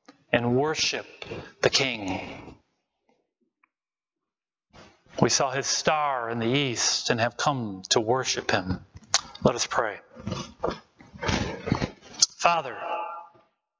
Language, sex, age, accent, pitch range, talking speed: English, male, 30-49, American, 125-155 Hz, 90 wpm